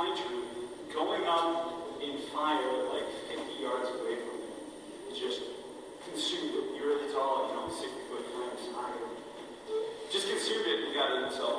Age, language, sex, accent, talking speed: 40-59, English, male, American, 160 wpm